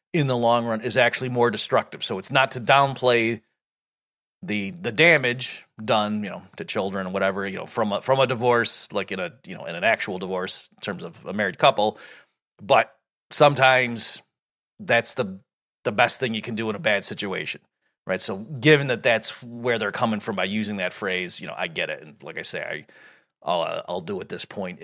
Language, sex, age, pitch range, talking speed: English, male, 30-49, 105-135 Hz, 215 wpm